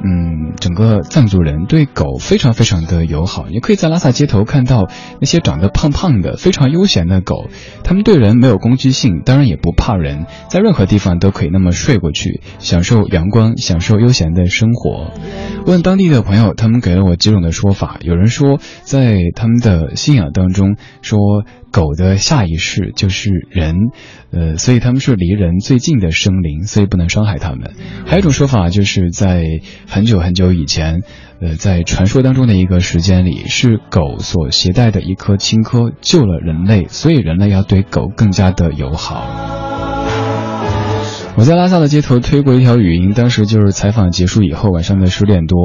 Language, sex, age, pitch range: Chinese, male, 20-39, 90-125 Hz